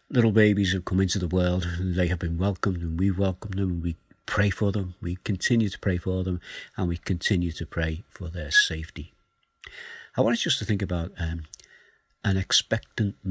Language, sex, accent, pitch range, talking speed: English, male, British, 90-120 Hz, 205 wpm